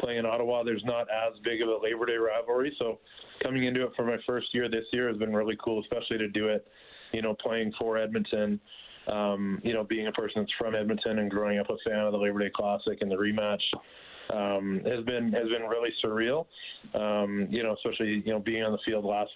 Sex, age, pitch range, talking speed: male, 20-39, 105-115 Hz, 230 wpm